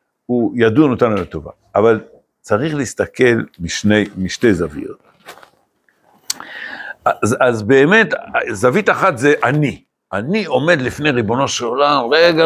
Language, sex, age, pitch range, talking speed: Hebrew, male, 60-79, 145-220 Hz, 115 wpm